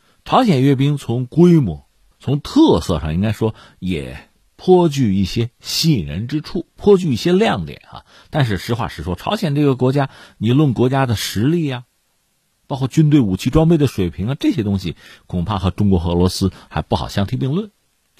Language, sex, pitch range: Chinese, male, 95-150 Hz